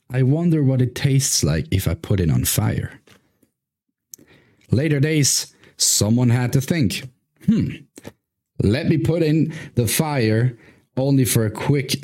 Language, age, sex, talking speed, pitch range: English, 30-49, male, 145 wpm, 105-140 Hz